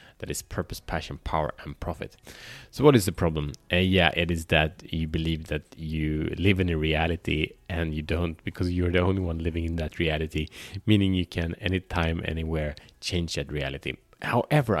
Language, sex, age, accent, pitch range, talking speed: Swedish, male, 30-49, Norwegian, 75-95 Hz, 185 wpm